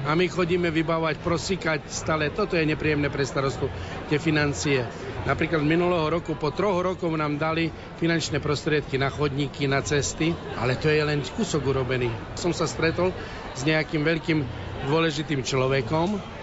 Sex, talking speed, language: male, 150 wpm, Slovak